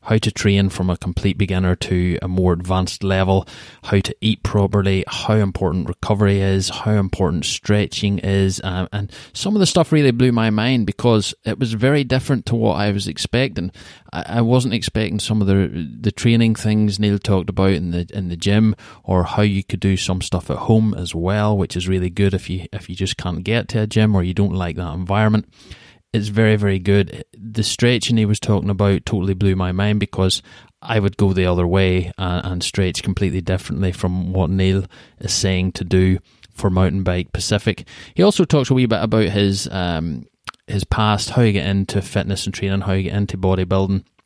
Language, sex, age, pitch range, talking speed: English, male, 20-39, 95-110 Hz, 205 wpm